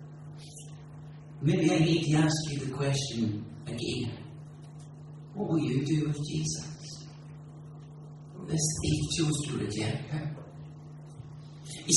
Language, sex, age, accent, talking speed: English, male, 40-59, British, 110 wpm